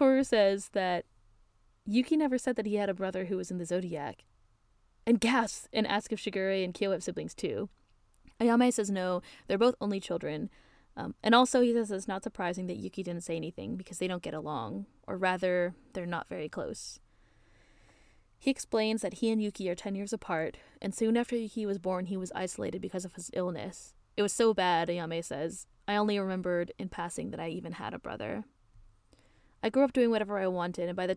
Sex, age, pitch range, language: female, 20-39, 170-215 Hz, English